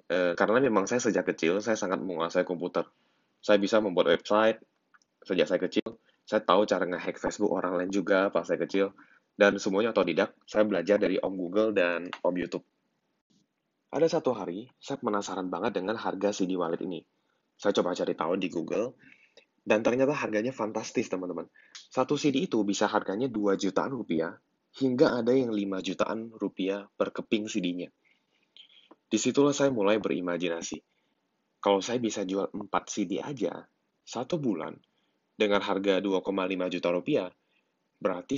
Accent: native